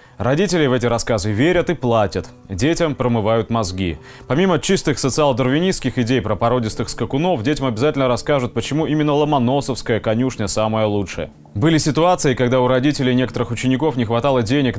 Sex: male